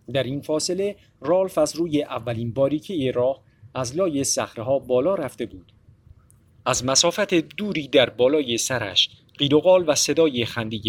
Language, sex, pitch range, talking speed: Persian, male, 115-155 Hz, 155 wpm